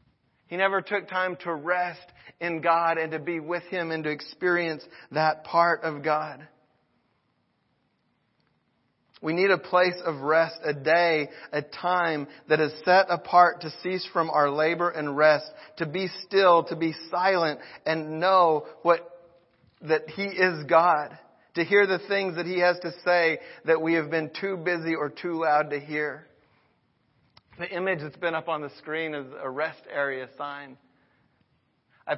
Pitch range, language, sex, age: 150-175 Hz, English, male, 40-59